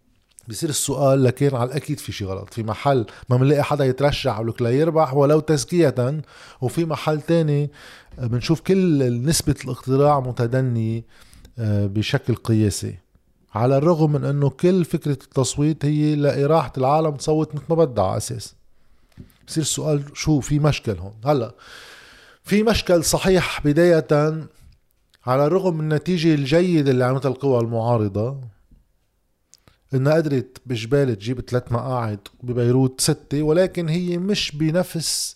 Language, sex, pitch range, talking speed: Arabic, male, 115-150 Hz, 125 wpm